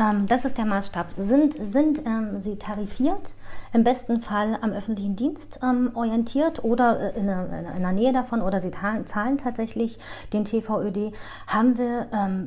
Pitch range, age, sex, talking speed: 175-225 Hz, 40-59, female, 155 wpm